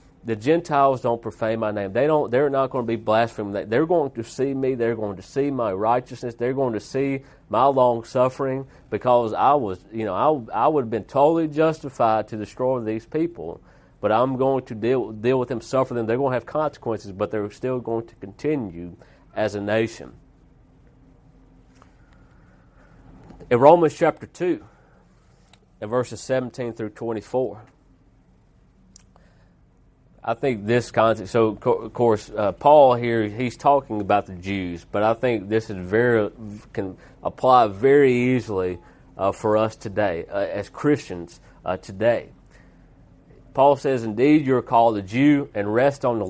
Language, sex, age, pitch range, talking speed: English, male, 40-59, 110-135 Hz, 165 wpm